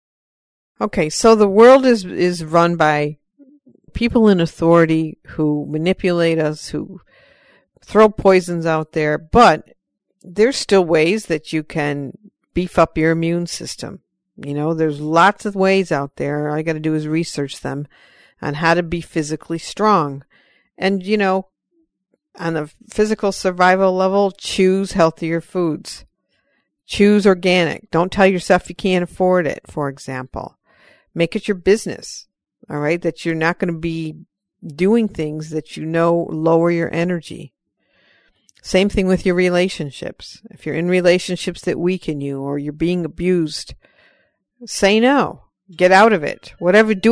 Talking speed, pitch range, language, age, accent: 150 wpm, 160-200 Hz, English, 50-69, American